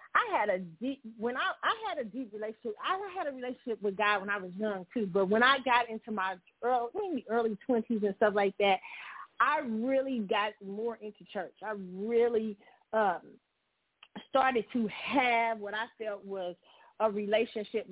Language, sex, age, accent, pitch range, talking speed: English, female, 40-59, American, 205-245 Hz, 185 wpm